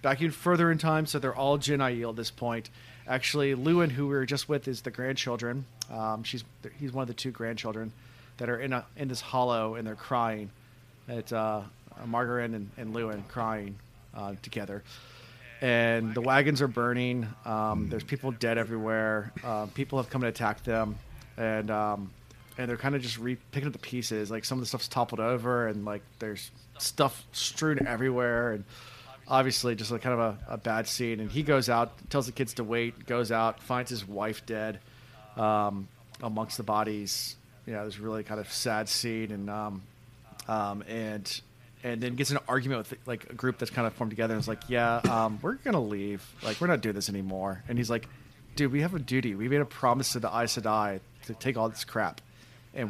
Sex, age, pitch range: male, 30-49, 110-130 Hz